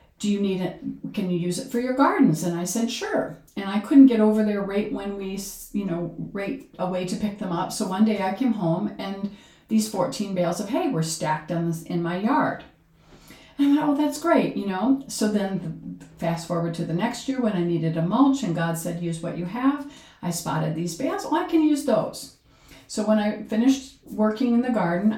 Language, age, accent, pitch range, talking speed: English, 50-69, American, 180-255 Hz, 225 wpm